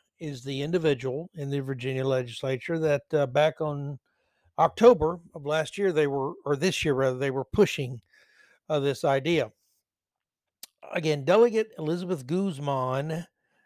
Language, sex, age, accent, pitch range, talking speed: English, male, 60-79, American, 130-185 Hz, 135 wpm